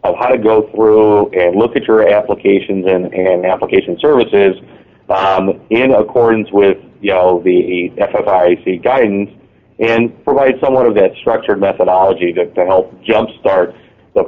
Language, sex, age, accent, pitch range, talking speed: English, male, 40-59, American, 95-110 Hz, 145 wpm